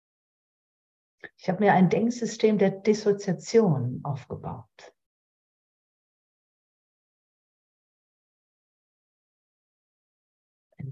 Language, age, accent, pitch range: German, 60-79, German, 145-220 Hz